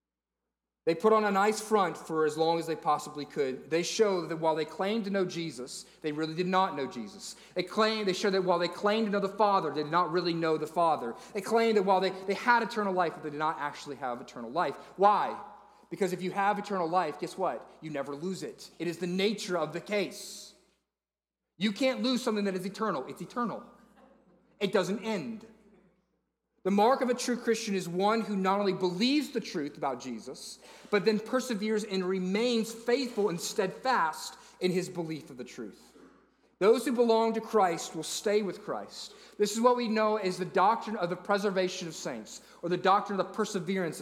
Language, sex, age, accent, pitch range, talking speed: English, male, 30-49, American, 175-220 Hz, 210 wpm